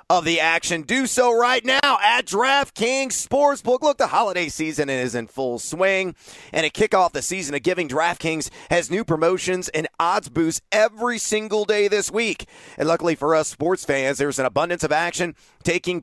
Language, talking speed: English, 185 wpm